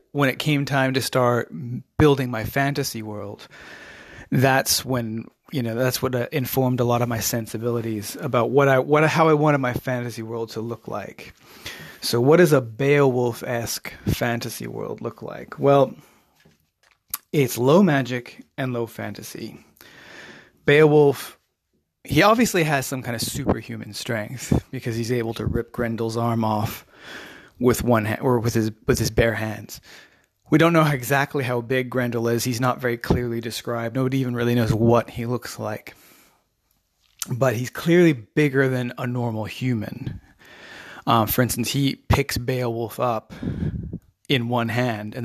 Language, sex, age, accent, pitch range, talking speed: English, male, 30-49, American, 115-135 Hz, 155 wpm